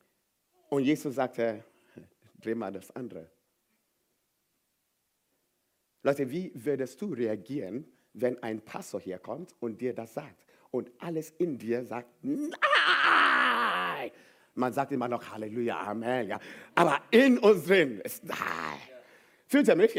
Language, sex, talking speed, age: German, male, 130 wpm, 50-69